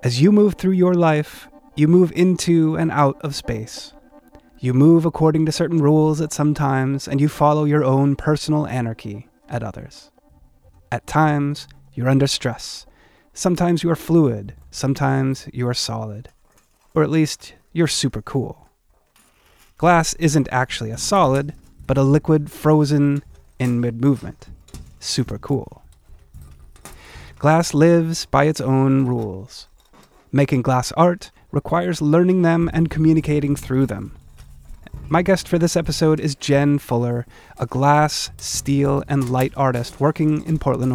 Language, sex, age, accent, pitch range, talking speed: English, male, 30-49, American, 125-160 Hz, 140 wpm